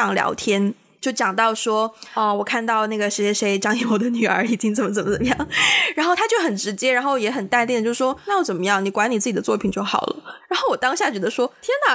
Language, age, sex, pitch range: Chinese, 20-39, female, 210-290 Hz